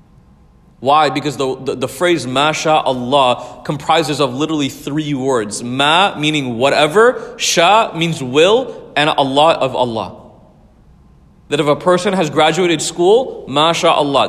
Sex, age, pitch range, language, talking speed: male, 30-49, 135-185 Hz, English, 130 wpm